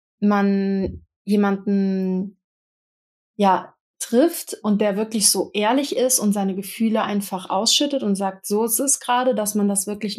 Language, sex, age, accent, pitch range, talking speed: German, female, 30-49, German, 200-230 Hz, 145 wpm